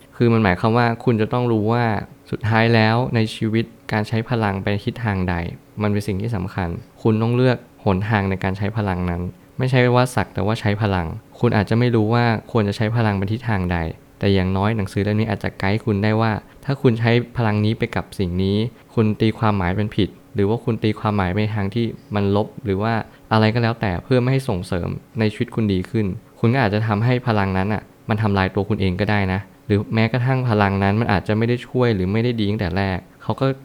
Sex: male